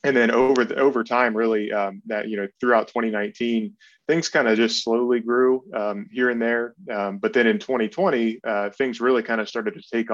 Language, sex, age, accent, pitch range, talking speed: English, male, 20-39, American, 105-115 Hz, 215 wpm